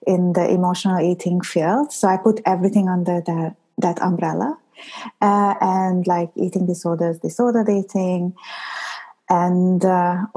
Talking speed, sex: 125 wpm, female